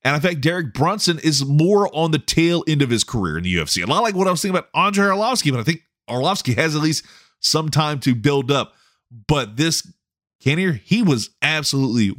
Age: 30-49